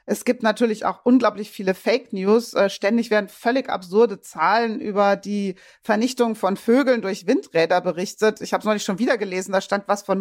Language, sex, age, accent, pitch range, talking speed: German, female, 40-59, German, 185-230 Hz, 195 wpm